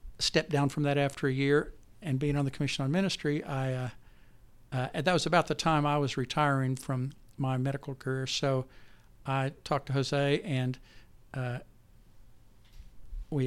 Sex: male